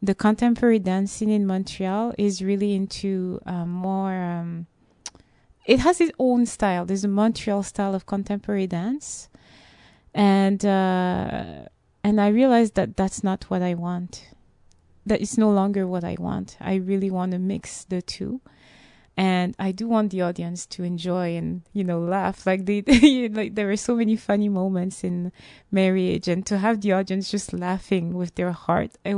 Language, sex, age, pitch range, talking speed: English, female, 20-39, 180-210 Hz, 170 wpm